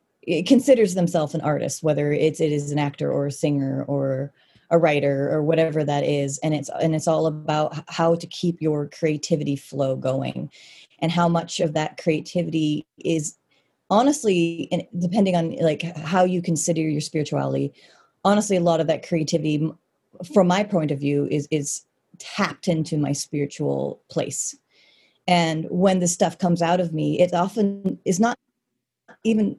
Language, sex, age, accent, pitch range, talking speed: English, female, 30-49, American, 150-180 Hz, 165 wpm